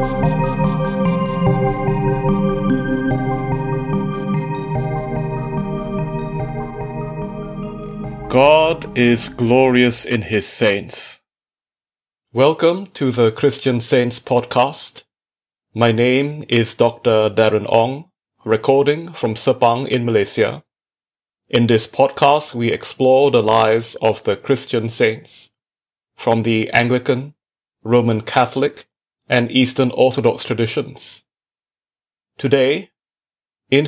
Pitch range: 115-145 Hz